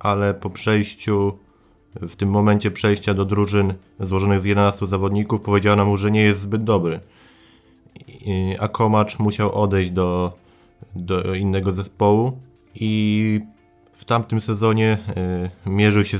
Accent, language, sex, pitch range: native, Polish, male, 95-105 Hz